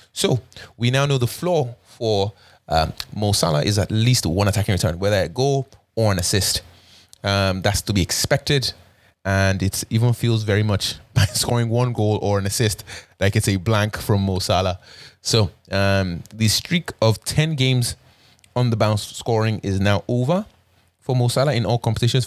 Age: 20-39